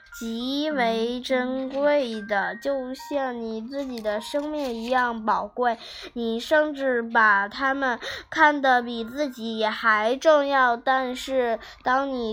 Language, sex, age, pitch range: Chinese, female, 10-29, 230-275 Hz